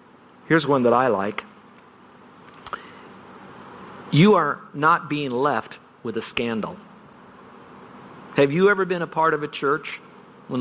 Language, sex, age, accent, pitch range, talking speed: English, male, 50-69, American, 120-160 Hz, 130 wpm